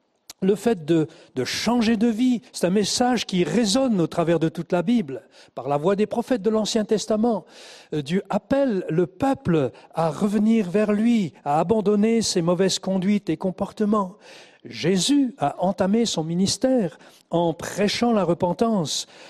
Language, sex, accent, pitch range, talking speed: French, male, French, 155-220 Hz, 155 wpm